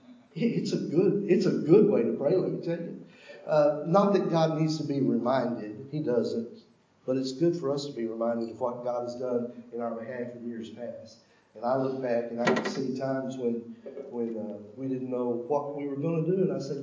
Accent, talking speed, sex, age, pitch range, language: American, 235 wpm, male, 60-79, 125-185 Hz, English